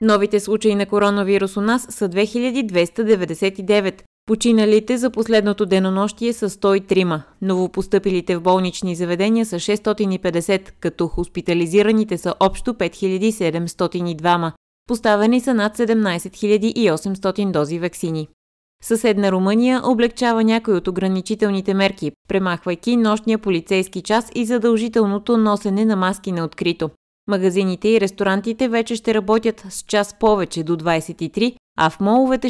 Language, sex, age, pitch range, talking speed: Bulgarian, female, 20-39, 180-220 Hz, 120 wpm